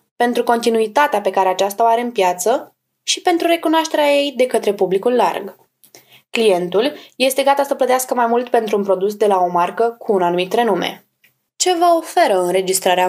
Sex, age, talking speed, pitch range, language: female, 20-39, 180 wpm, 205-295 Hz, Romanian